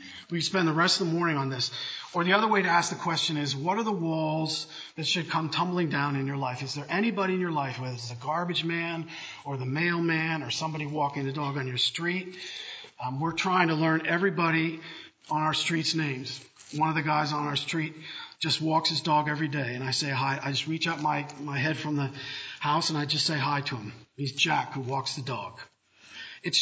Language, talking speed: English, 230 wpm